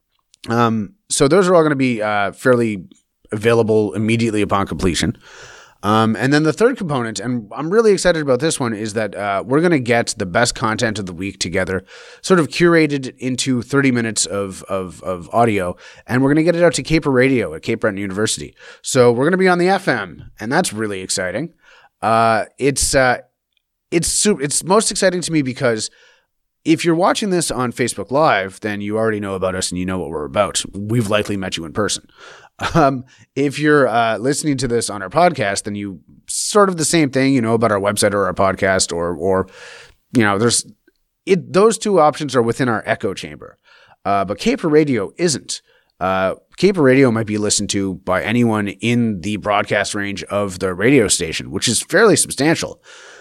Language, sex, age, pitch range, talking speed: English, male, 30-49, 100-145 Hz, 200 wpm